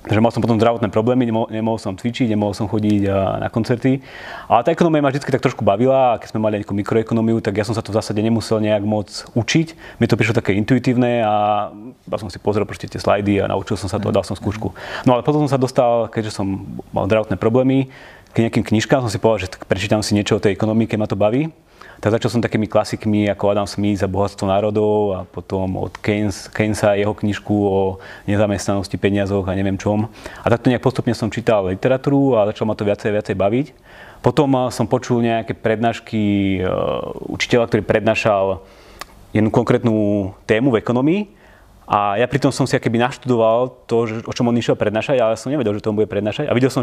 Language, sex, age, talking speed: Slovak, male, 30-49, 210 wpm